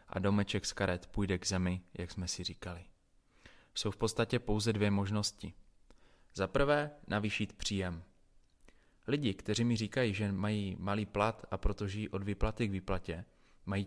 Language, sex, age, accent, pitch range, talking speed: Czech, male, 30-49, native, 95-110 Hz, 155 wpm